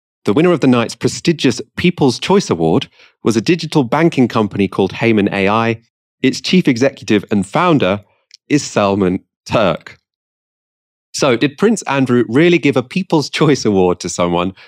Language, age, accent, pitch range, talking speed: English, 30-49, British, 95-150 Hz, 150 wpm